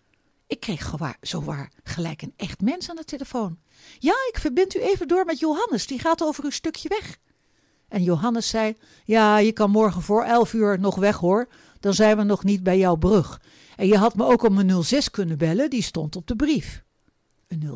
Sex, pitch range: female, 175-260 Hz